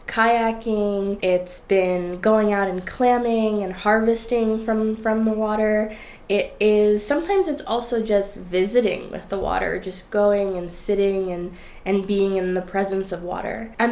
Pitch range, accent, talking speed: 175-200 Hz, American, 155 wpm